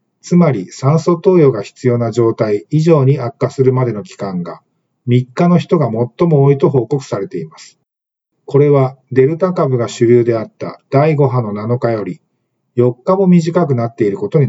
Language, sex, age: Japanese, male, 50-69